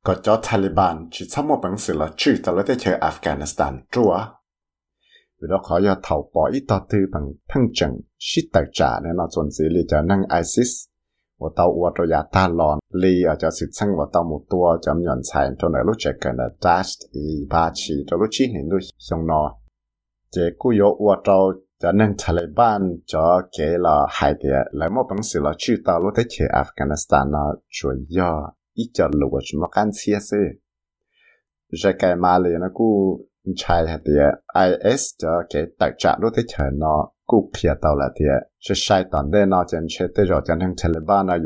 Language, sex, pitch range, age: English, male, 75-95 Hz, 60-79